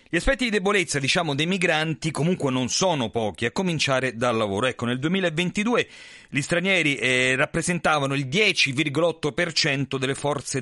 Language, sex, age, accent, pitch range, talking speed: Italian, male, 40-59, native, 125-170 Hz, 145 wpm